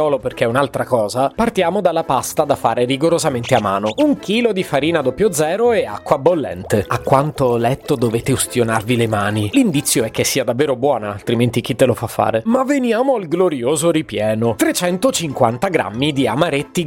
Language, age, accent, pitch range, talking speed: Italian, 30-49, native, 120-180 Hz, 180 wpm